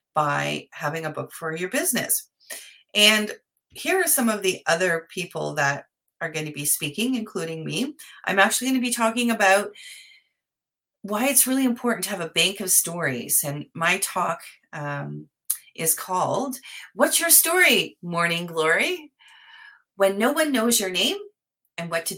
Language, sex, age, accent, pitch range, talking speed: English, female, 30-49, American, 155-215 Hz, 160 wpm